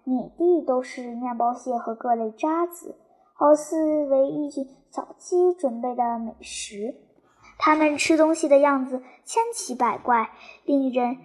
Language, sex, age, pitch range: Chinese, male, 10-29, 255-330 Hz